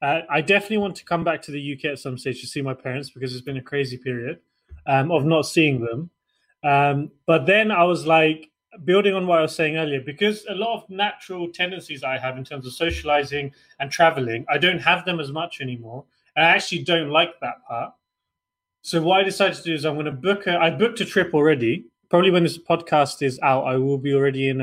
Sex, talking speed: male, 235 wpm